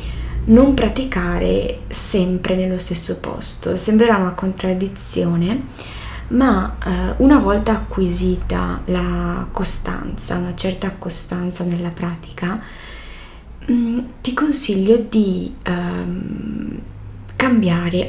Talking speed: 80 wpm